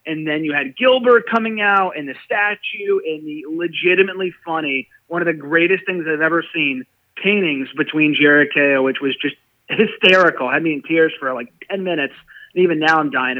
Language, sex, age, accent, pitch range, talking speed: English, male, 30-49, American, 150-195 Hz, 195 wpm